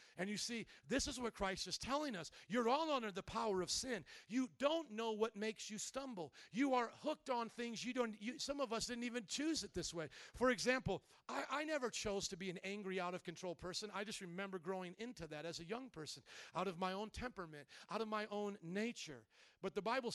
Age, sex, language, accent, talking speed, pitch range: 50-69, male, English, American, 225 wpm, 185-240 Hz